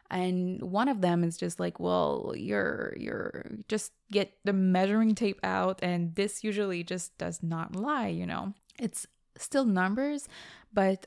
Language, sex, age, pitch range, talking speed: English, female, 20-39, 175-210 Hz, 155 wpm